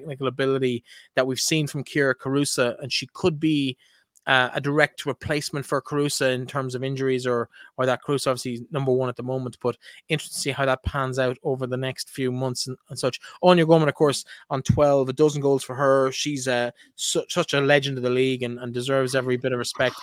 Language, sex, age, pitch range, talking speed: English, male, 20-39, 130-145 Hz, 230 wpm